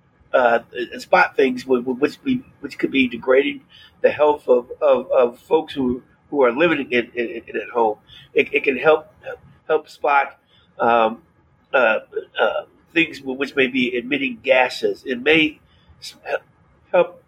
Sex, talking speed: male, 145 wpm